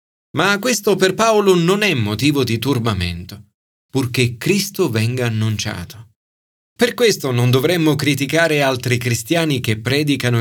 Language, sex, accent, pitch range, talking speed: Italian, male, native, 110-165 Hz, 125 wpm